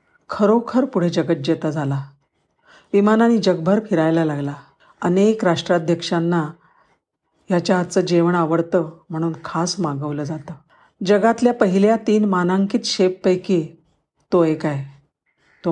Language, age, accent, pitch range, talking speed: Marathi, 50-69, native, 160-205 Hz, 105 wpm